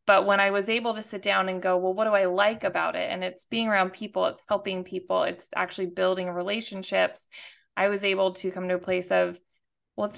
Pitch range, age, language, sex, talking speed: 180-200 Hz, 20-39, English, female, 235 wpm